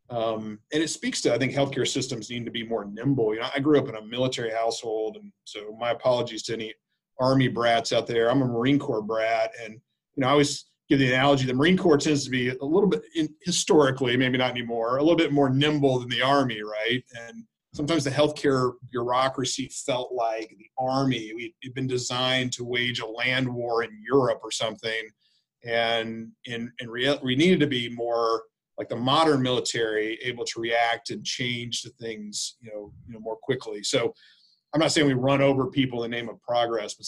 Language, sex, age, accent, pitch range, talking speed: English, male, 40-59, American, 115-135 Hz, 210 wpm